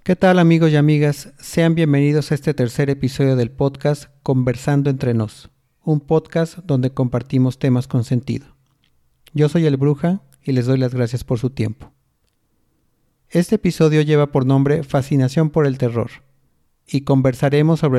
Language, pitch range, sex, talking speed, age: Spanish, 125-145 Hz, male, 155 wpm, 40-59